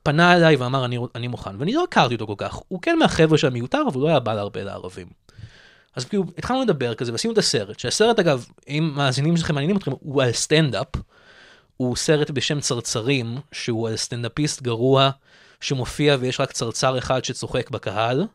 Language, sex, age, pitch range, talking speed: Hebrew, male, 20-39, 115-155 Hz, 190 wpm